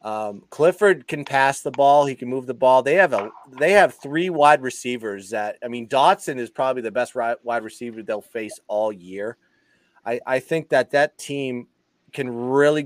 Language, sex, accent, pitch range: English, male, American, 110-145 Hz